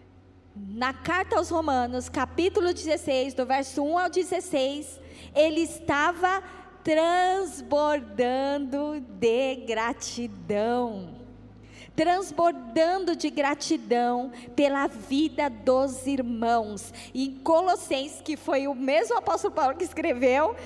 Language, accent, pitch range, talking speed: Portuguese, Brazilian, 225-325 Hz, 95 wpm